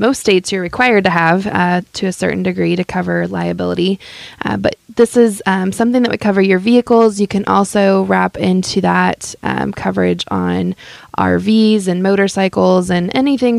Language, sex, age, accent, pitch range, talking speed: English, female, 20-39, American, 170-200 Hz, 170 wpm